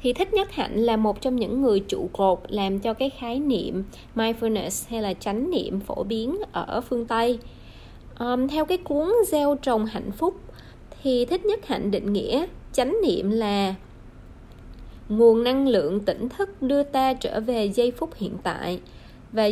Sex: female